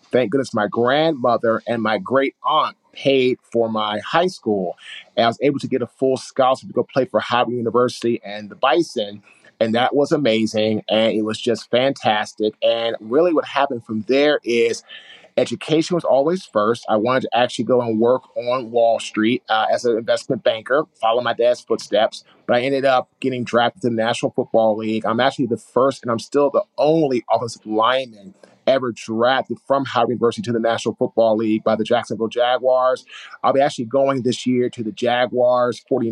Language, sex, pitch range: English, male, 115-135 Hz